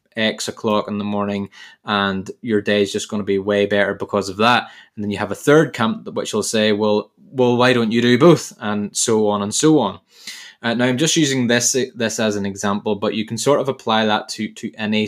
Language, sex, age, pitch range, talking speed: English, male, 20-39, 105-125 Hz, 245 wpm